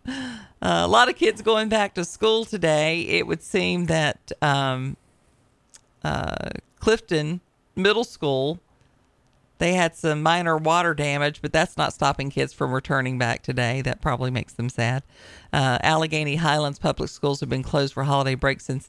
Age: 40-59